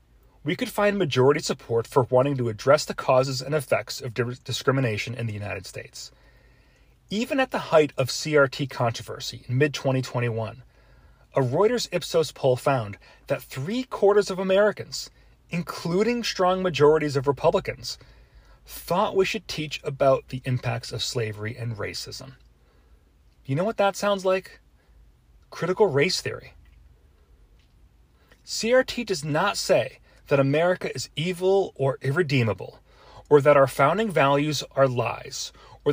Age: 30-49